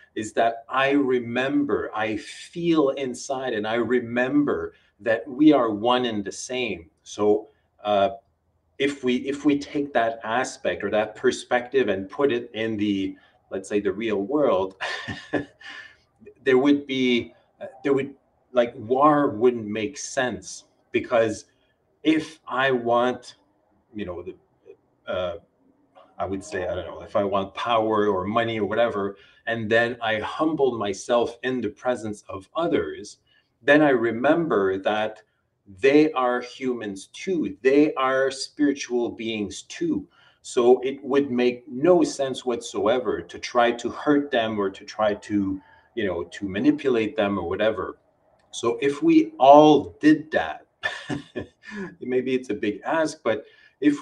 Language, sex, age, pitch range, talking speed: English, male, 30-49, 110-145 Hz, 145 wpm